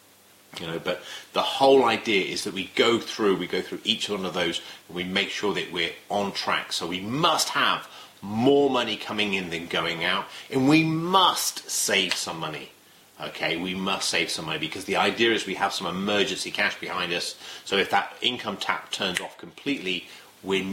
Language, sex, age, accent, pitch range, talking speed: English, male, 30-49, British, 90-125 Hz, 200 wpm